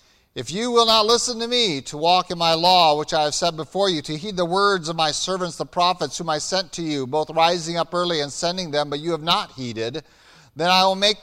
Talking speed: 255 wpm